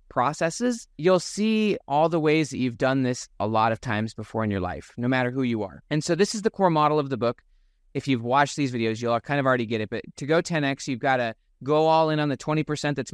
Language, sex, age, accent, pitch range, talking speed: English, male, 20-39, American, 125-155 Hz, 265 wpm